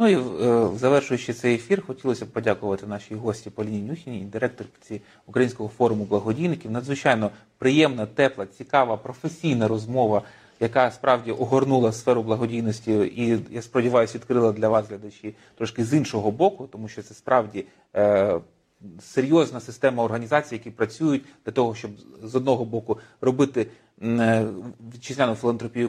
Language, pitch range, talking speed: Ukrainian, 110-135 Hz, 135 wpm